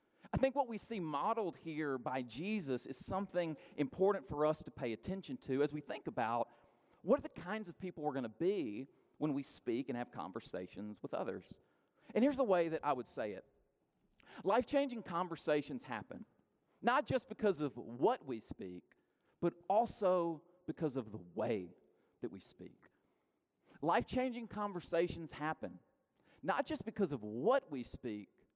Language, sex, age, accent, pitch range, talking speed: English, male, 40-59, American, 140-200 Hz, 165 wpm